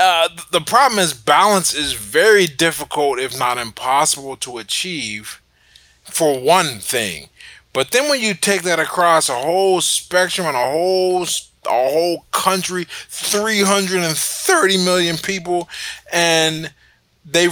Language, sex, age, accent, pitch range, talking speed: English, male, 20-39, American, 135-185 Hz, 135 wpm